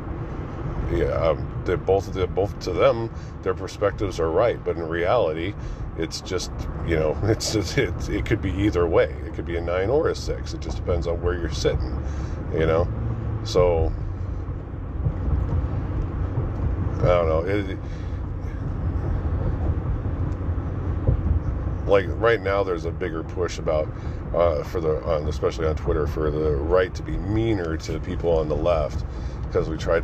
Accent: American